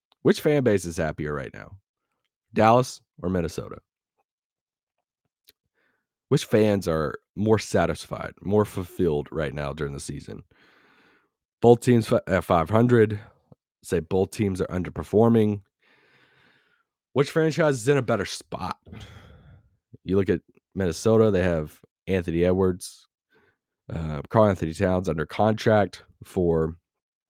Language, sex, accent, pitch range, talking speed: English, male, American, 90-110 Hz, 115 wpm